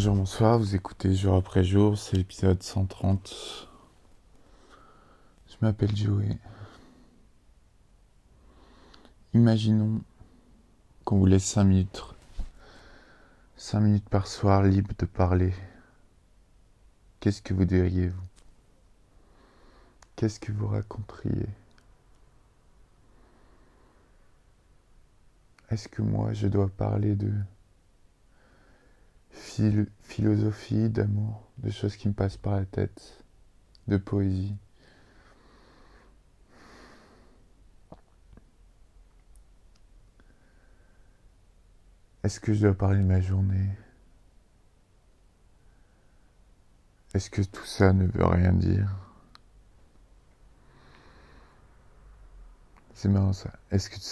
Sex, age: male, 20-39